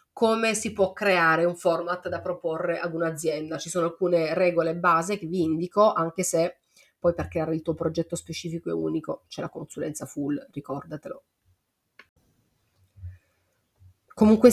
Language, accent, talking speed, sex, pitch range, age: Italian, native, 145 wpm, female, 165-185 Hz, 30-49